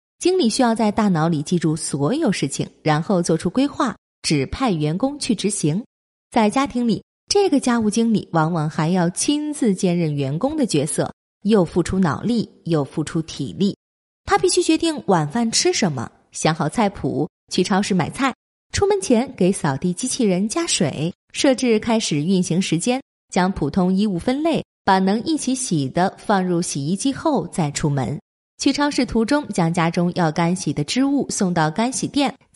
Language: Chinese